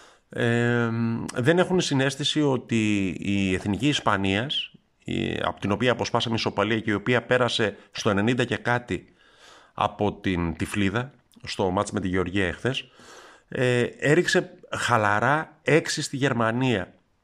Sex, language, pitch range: male, Greek, 100-135 Hz